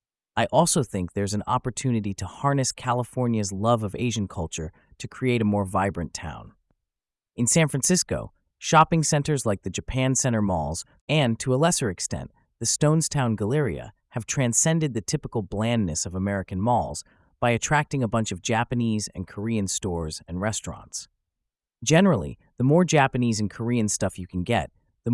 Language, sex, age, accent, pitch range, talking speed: English, male, 30-49, American, 95-130 Hz, 160 wpm